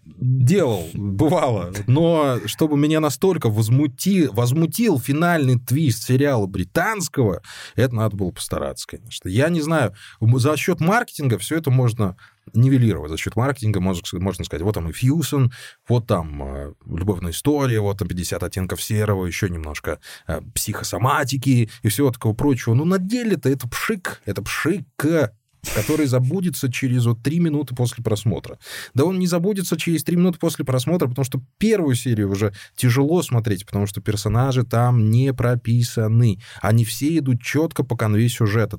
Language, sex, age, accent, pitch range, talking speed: Russian, male, 20-39, native, 105-145 Hz, 150 wpm